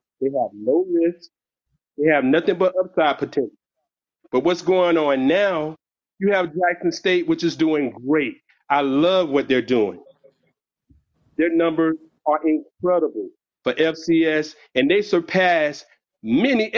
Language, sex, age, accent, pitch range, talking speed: English, male, 40-59, American, 140-185 Hz, 135 wpm